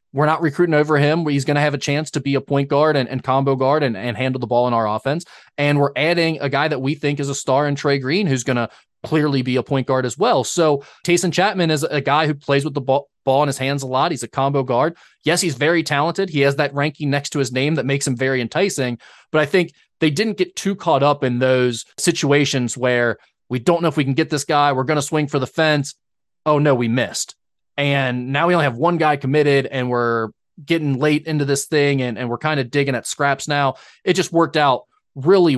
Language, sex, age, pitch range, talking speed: English, male, 20-39, 130-155 Hz, 255 wpm